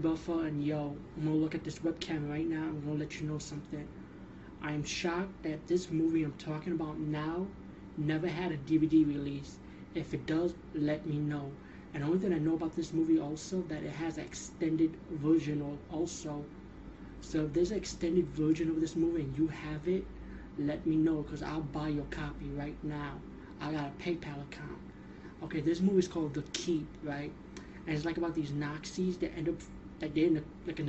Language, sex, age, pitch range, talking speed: English, male, 20-39, 150-165 Hz, 200 wpm